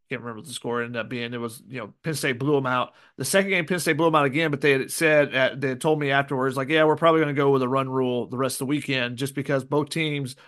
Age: 30-49